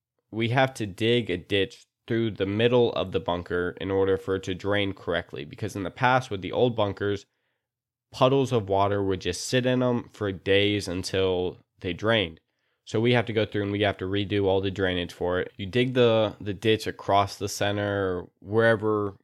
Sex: male